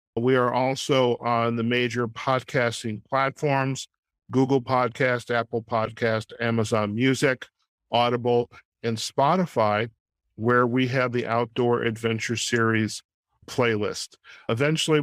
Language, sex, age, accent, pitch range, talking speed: English, male, 50-69, American, 115-135 Hz, 105 wpm